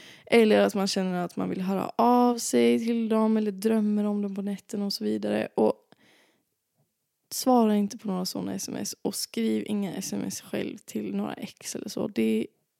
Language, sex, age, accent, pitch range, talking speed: Swedish, female, 20-39, native, 190-225 Hz, 185 wpm